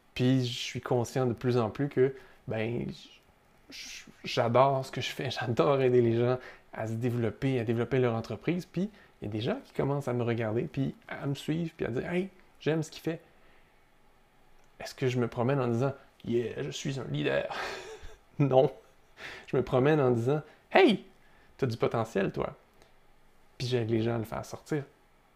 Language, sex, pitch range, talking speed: French, male, 120-140 Hz, 190 wpm